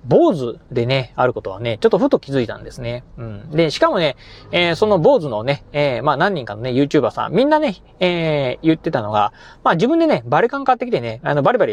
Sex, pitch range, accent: male, 130-215 Hz, native